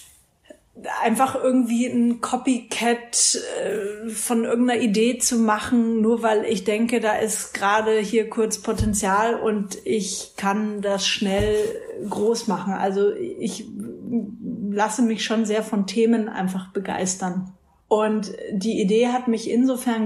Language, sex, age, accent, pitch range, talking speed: German, female, 30-49, German, 205-235 Hz, 125 wpm